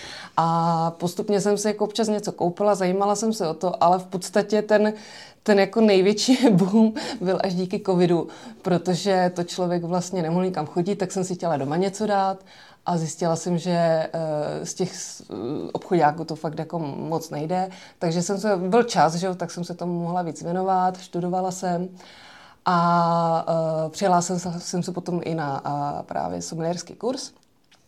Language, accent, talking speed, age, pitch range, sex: English, Czech, 165 wpm, 20-39, 175-210 Hz, female